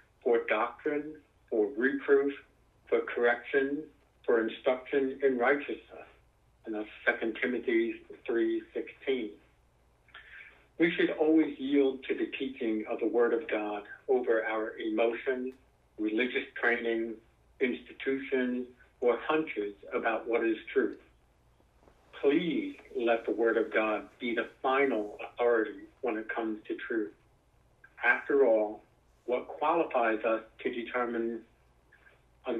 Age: 60-79